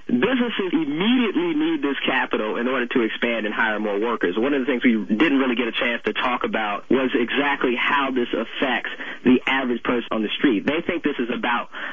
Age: 30-49